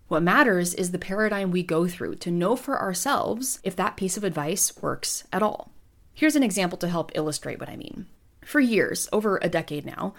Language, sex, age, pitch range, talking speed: English, female, 30-49, 175-245 Hz, 205 wpm